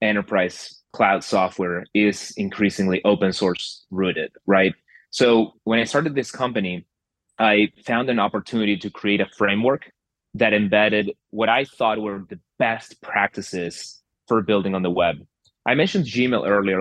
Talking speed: 145 wpm